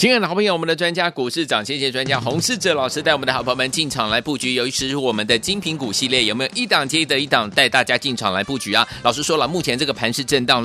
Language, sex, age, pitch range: Chinese, male, 30-49, 135-190 Hz